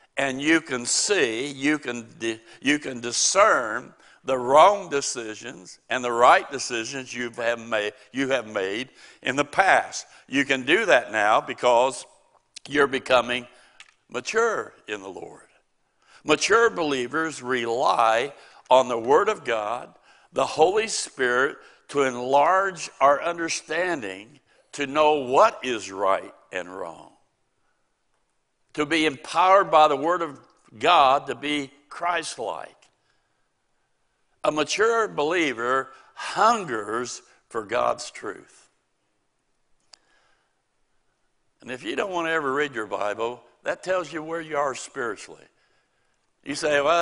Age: 60-79